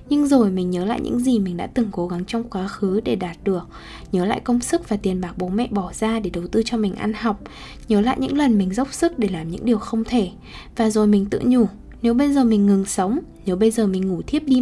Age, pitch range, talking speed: 10-29, 195-250 Hz, 275 wpm